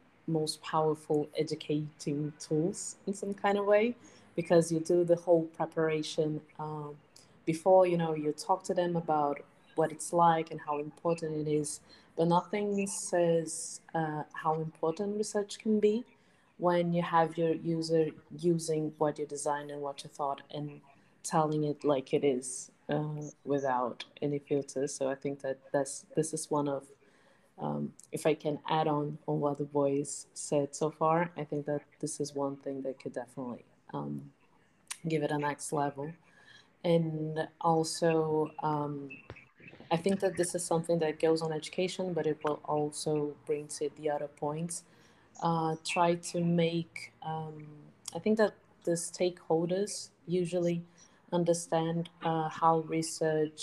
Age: 20-39